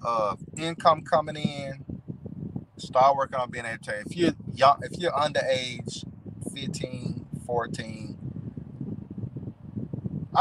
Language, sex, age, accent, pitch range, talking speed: English, male, 30-49, American, 130-180 Hz, 105 wpm